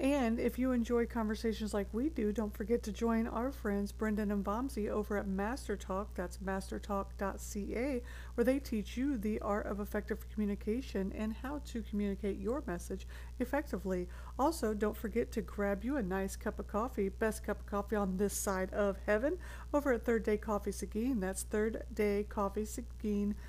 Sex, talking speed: female, 175 wpm